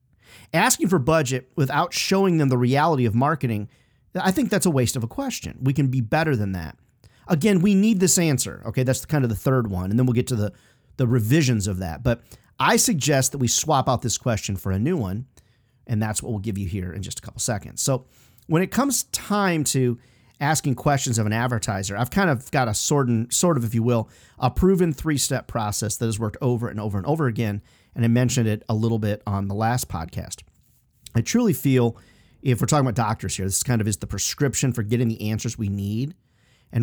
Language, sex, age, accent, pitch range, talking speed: English, male, 40-59, American, 105-140 Hz, 225 wpm